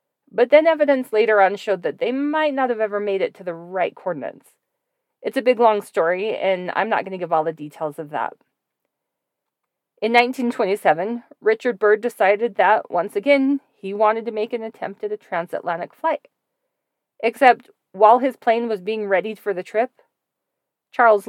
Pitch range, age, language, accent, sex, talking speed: 195-260 Hz, 40-59, English, American, female, 180 wpm